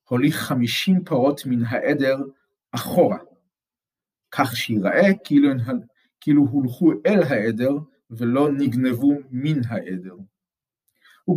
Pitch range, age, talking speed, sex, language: 120-155 Hz, 50-69, 95 wpm, male, Hebrew